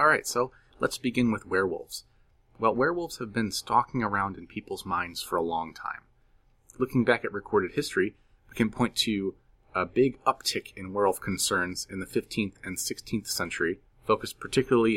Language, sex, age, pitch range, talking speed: English, male, 30-49, 95-125 Hz, 170 wpm